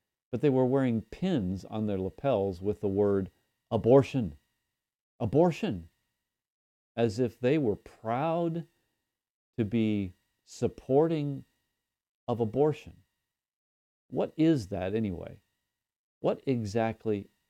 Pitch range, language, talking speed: 95-125 Hz, English, 100 wpm